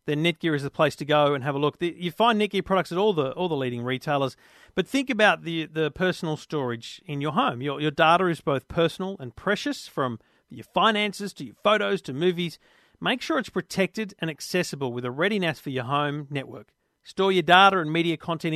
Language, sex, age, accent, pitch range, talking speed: English, male, 40-59, Australian, 140-180 Hz, 215 wpm